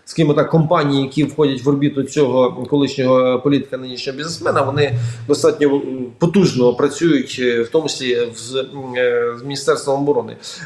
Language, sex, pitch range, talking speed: Ukrainian, male, 135-155 Hz, 135 wpm